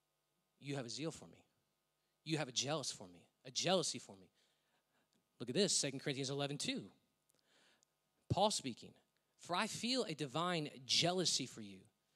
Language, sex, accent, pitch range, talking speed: English, male, American, 140-200 Hz, 155 wpm